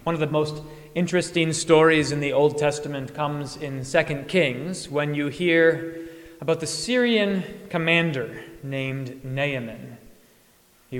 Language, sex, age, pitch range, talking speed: English, male, 30-49, 130-160 Hz, 130 wpm